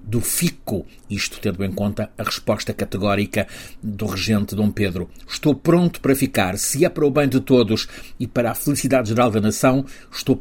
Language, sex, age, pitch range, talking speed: Portuguese, male, 50-69, 105-135 Hz, 185 wpm